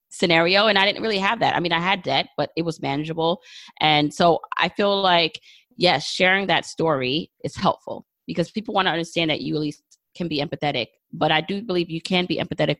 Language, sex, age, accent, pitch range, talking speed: English, female, 20-39, American, 145-170 Hz, 220 wpm